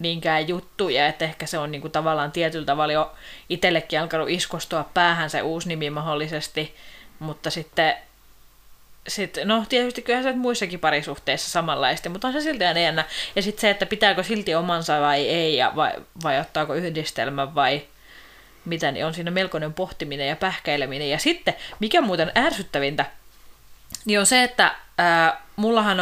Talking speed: 160 wpm